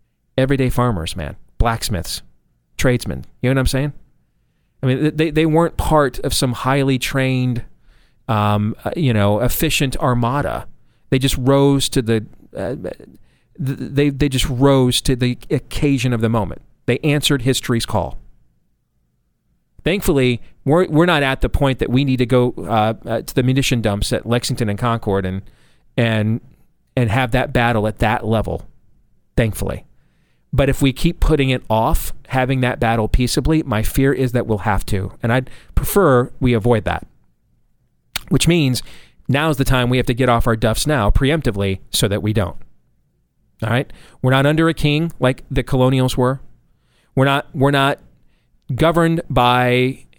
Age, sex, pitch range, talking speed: 40-59, male, 115-140 Hz, 160 wpm